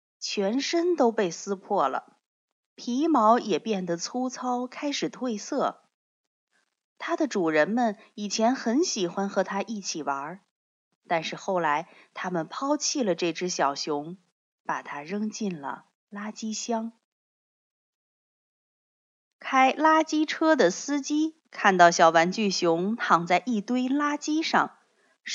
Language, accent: Chinese, native